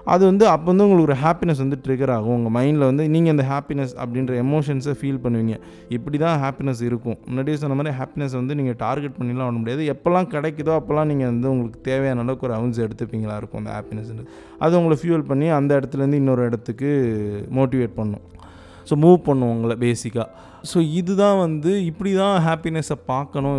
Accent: native